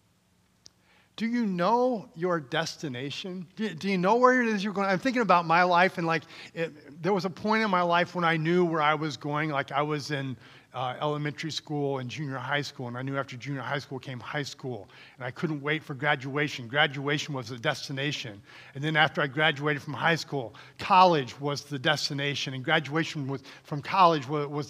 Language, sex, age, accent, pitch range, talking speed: English, male, 40-59, American, 145-180 Hz, 205 wpm